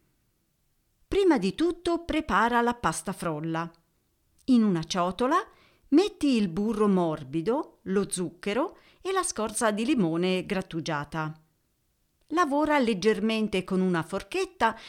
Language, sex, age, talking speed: Italian, female, 50-69, 110 wpm